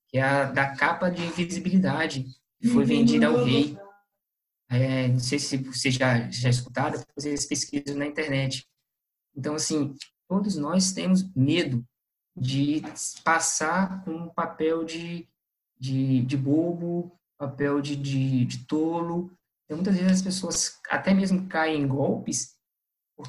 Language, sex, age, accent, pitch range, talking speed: Portuguese, male, 20-39, Brazilian, 140-190 Hz, 145 wpm